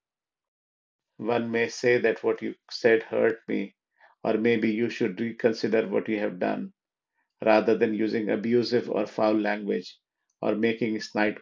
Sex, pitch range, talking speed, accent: male, 110-120 Hz, 145 wpm, Indian